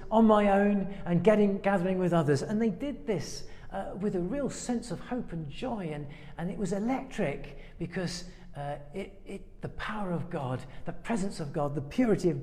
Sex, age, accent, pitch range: male, 50-69, British, 155-210 Hz